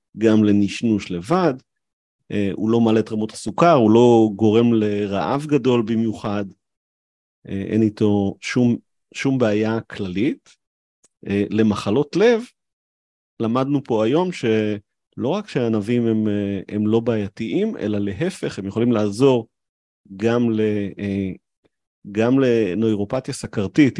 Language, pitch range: Hebrew, 100-115 Hz